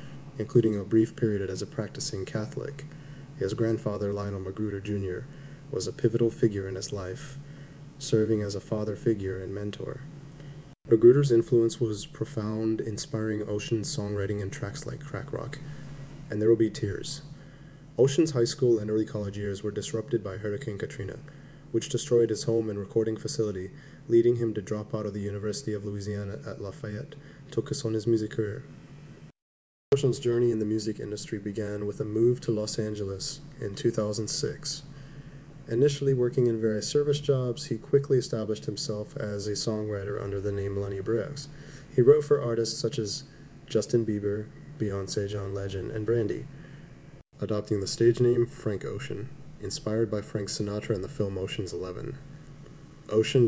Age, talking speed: 20-39, 160 wpm